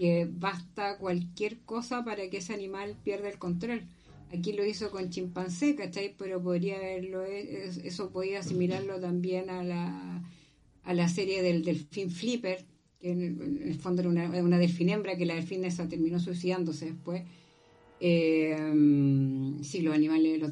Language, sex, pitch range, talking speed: Spanish, female, 175-210 Hz, 155 wpm